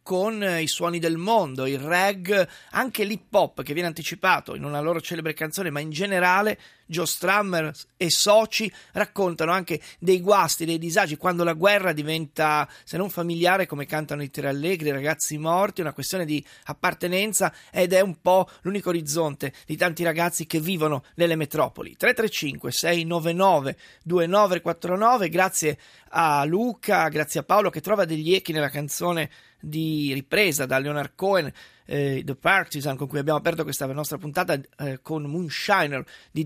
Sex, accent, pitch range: male, native, 155-190 Hz